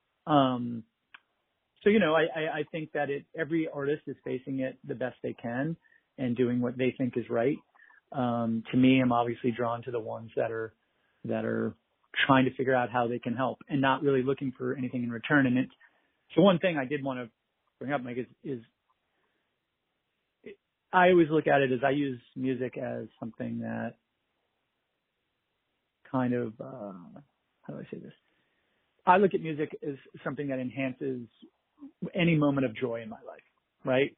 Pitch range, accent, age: 120-150 Hz, American, 40-59